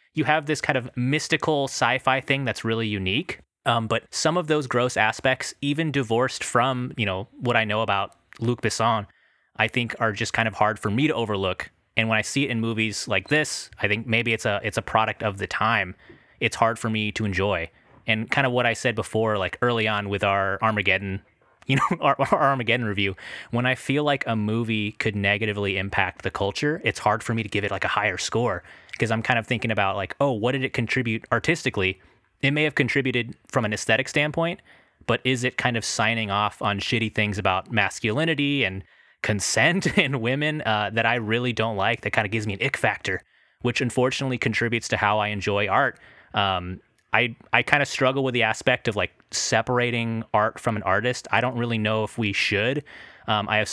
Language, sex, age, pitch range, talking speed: English, male, 20-39, 105-125 Hz, 215 wpm